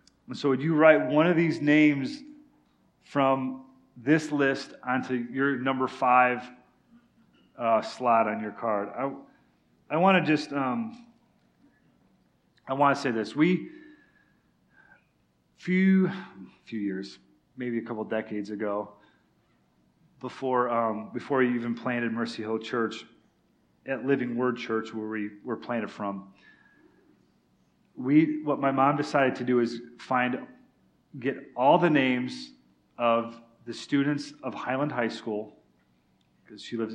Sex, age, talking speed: male, 40-59, 135 wpm